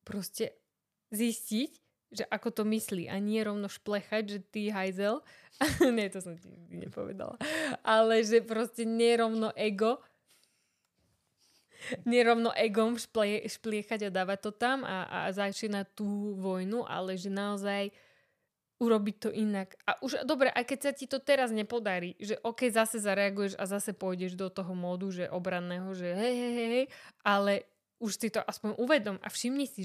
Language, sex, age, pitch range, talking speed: Slovak, female, 20-39, 190-230 Hz, 155 wpm